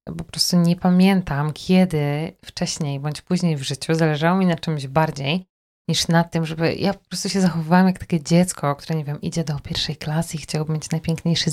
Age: 20-39